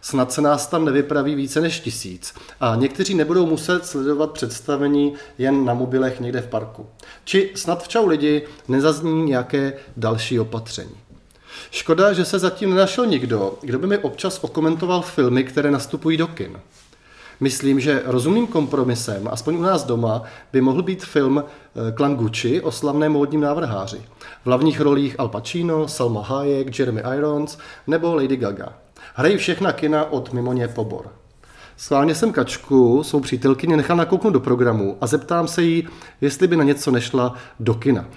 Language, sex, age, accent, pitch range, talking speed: Czech, male, 30-49, native, 125-150 Hz, 160 wpm